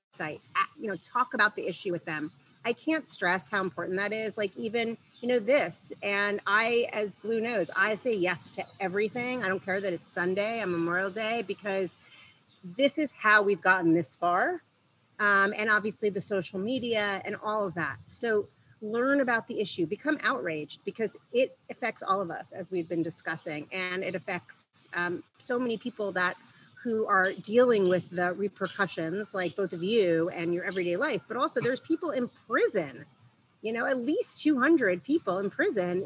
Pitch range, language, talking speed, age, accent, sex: 180-235 Hz, English, 185 wpm, 40-59, American, female